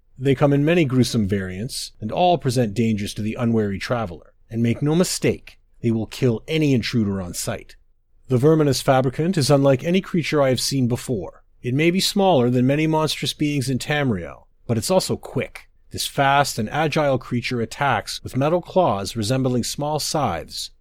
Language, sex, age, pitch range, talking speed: English, male, 40-59, 110-150 Hz, 180 wpm